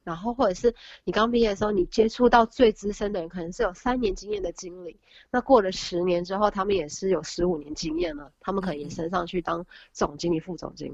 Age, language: 20-39, Chinese